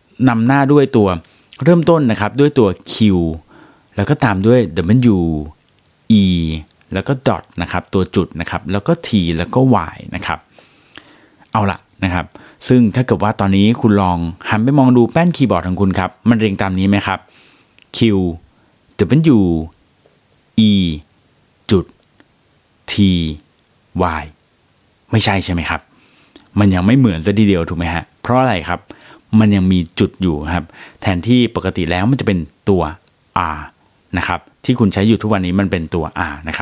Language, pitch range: Thai, 90-120 Hz